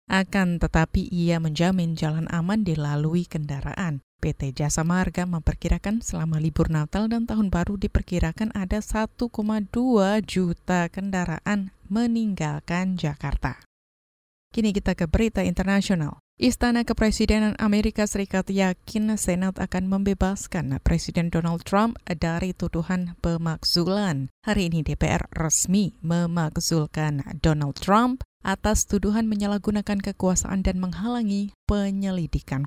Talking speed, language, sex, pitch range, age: 105 wpm, Indonesian, female, 165-205 Hz, 20-39